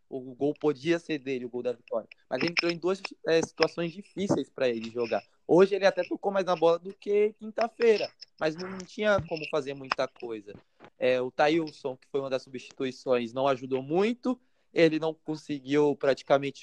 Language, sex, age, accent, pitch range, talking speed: Portuguese, male, 20-39, Brazilian, 130-180 Hz, 190 wpm